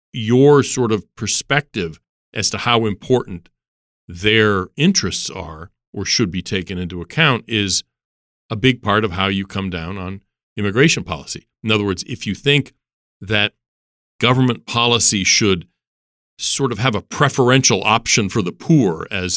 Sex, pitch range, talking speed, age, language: male, 90-120 Hz, 150 wpm, 40-59, English